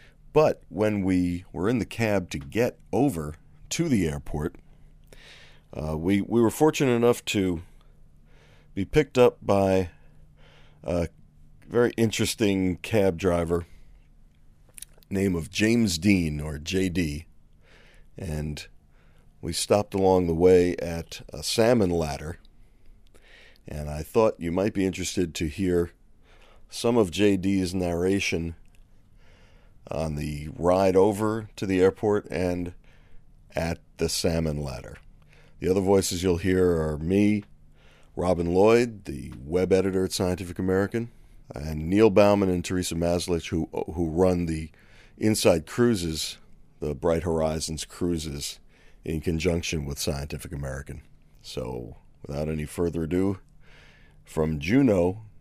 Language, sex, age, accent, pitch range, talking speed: English, male, 40-59, American, 80-100 Hz, 120 wpm